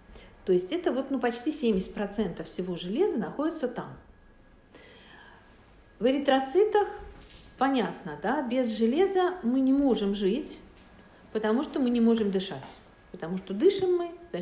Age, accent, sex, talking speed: 50-69, native, female, 135 wpm